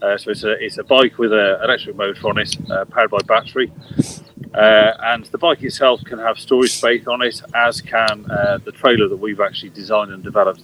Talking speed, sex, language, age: 220 wpm, male, English, 40-59